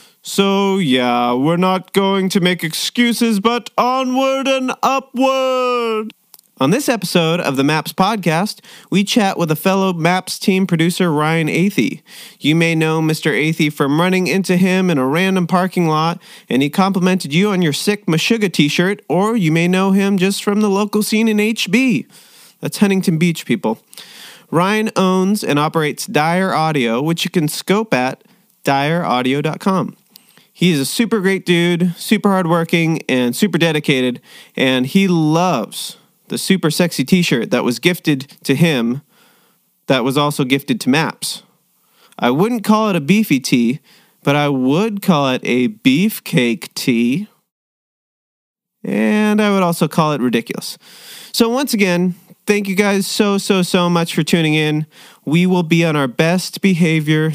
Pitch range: 160-210 Hz